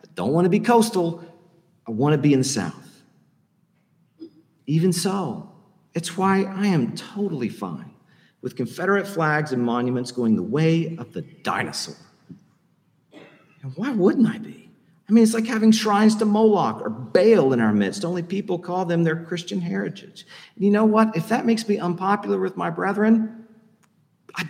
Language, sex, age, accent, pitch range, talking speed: English, male, 50-69, American, 160-205 Hz, 170 wpm